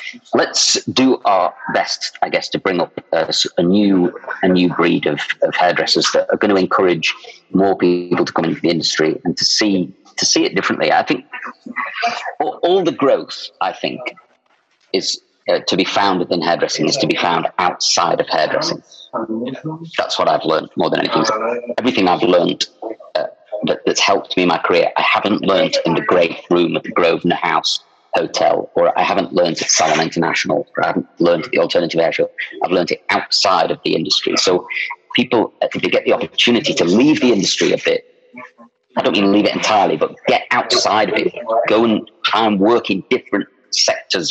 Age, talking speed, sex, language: 40-59, 195 wpm, male, English